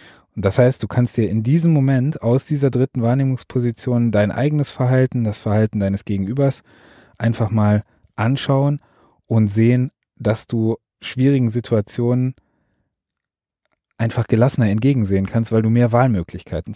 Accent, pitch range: German, 105-130 Hz